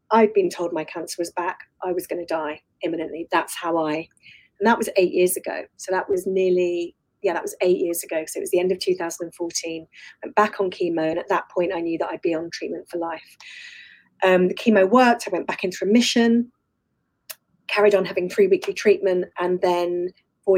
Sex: female